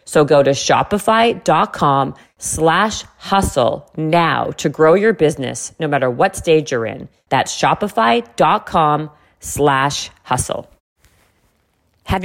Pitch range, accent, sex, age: 155-205 Hz, American, female, 40-59